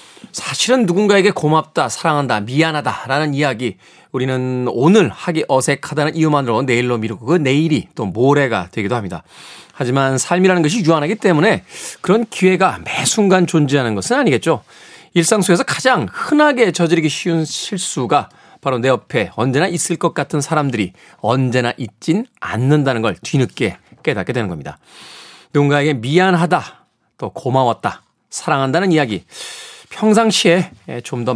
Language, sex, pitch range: Korean, male, 125-175 Hz